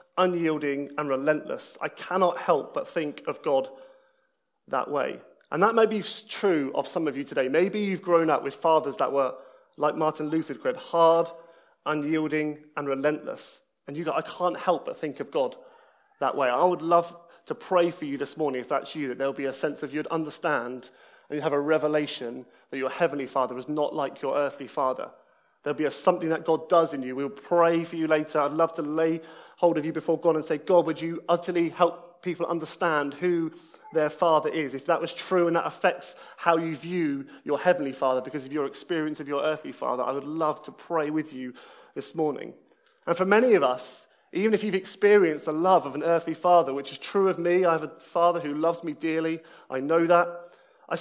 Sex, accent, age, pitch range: male, British, 30-49, 150-175 Hz